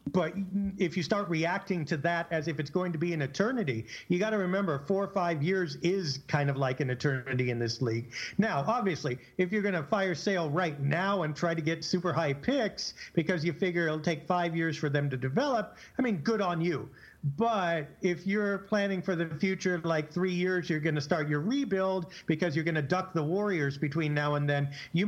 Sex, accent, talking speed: male, American, 225 wpm